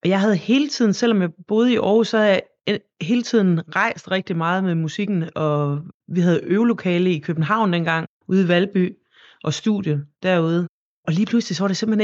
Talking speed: 200 wpm